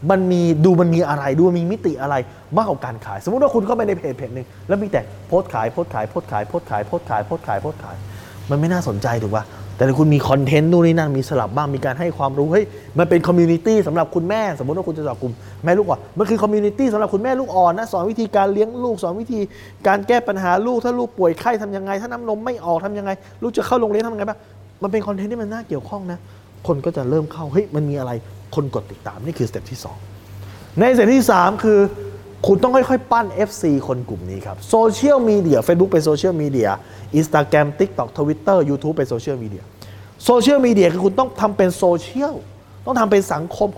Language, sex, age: Thai, male, 20-39